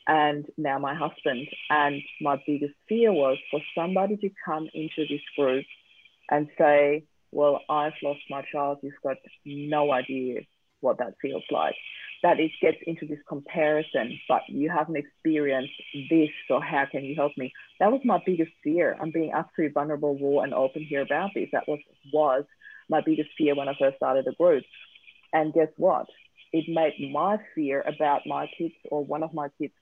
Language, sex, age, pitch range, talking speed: English, female, 40-59, 145-165 Hz, 180 wpm